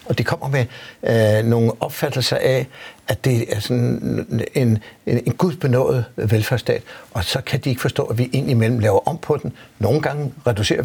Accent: native